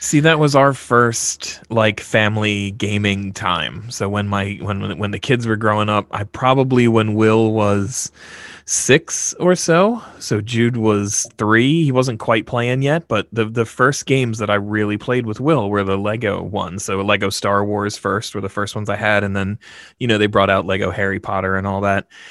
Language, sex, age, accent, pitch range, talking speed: English, male, 20-39, American, 105-135 Hz, 200 wpm